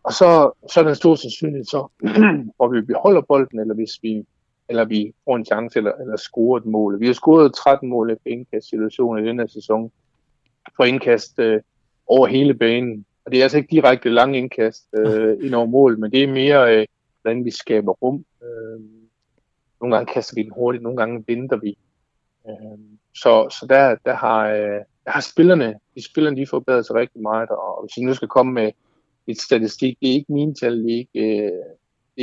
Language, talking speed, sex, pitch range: Danish, 200 wpm, male, 110-130 Hz